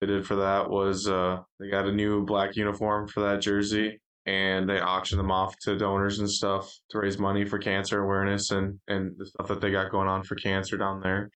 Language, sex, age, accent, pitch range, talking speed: English, male, 10-29, American, 95-105 Hz, 225 wpm